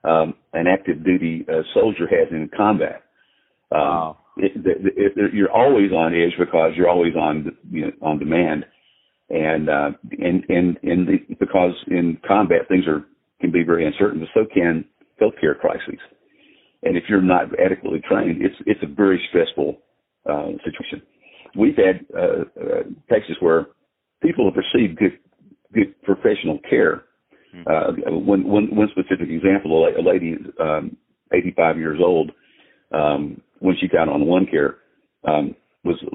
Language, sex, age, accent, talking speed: English, male, 50-69, American, 150 wpm